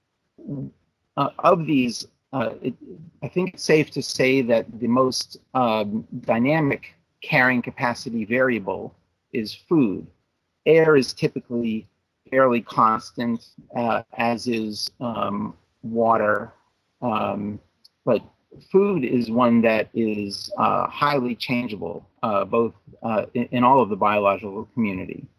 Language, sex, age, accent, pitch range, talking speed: English, male, 40-59, American, 110-140 Hz, 120 wpm